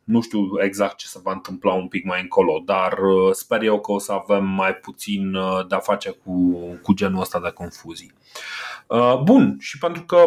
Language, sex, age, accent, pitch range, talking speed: Romanian, male, 20-39, native, 100-140 Hz, 195 wpm